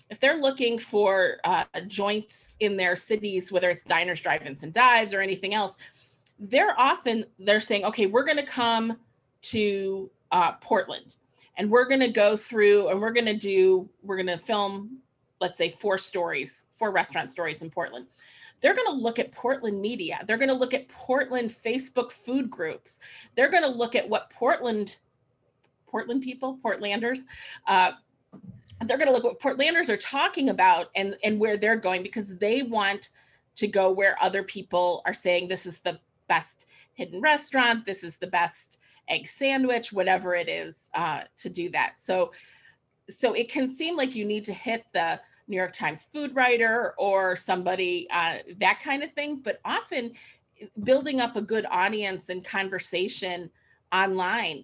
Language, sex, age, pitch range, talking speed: English, female, 30-49, 185-245 Hz, 165 wpm